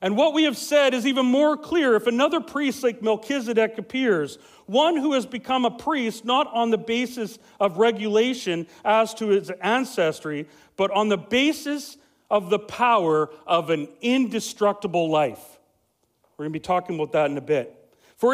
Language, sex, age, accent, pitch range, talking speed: English, male, 40-59, American, 165-245 Hz, 175 wpm